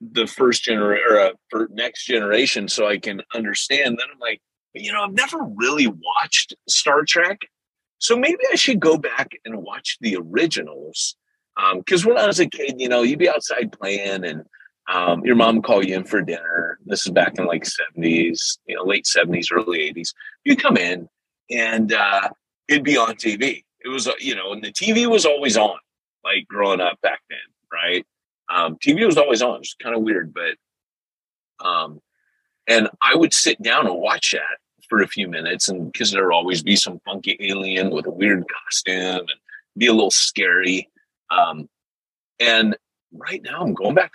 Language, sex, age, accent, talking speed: English, male, 30-49, American, 190 wpm